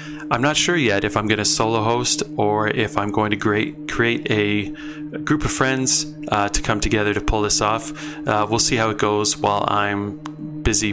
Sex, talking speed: male, 205 wpm